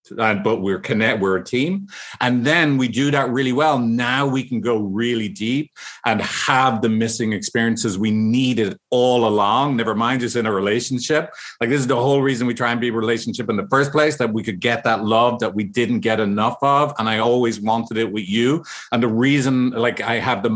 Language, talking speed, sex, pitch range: English, 220 wpm, male, 115-140 Hz